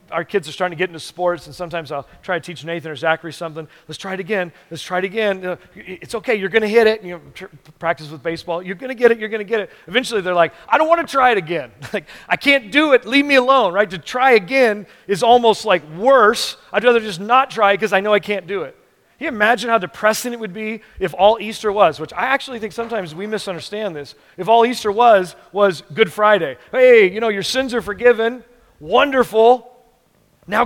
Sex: male